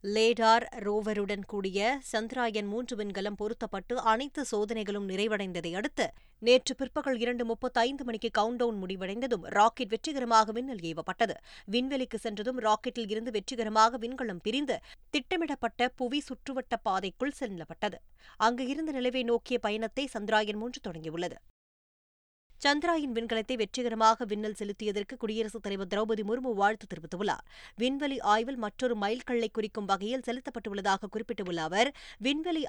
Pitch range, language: 215-255 Hz, Tamil